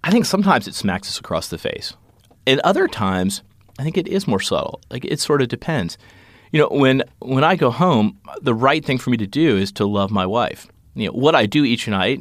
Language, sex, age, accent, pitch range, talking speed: English, male, 30-49, American, 95-120 Hz, 240 wpm